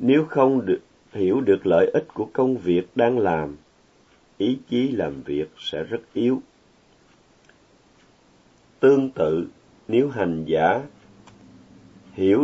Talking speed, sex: 115 wpm, male